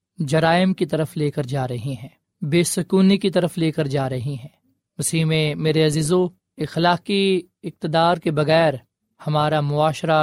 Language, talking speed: Urdu, 160 wpm